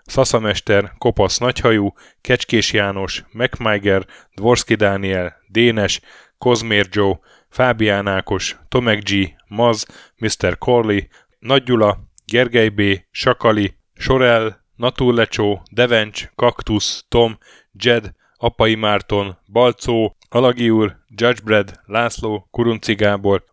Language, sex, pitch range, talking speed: Hungarian, male, 100-120 Hz, 95 wpm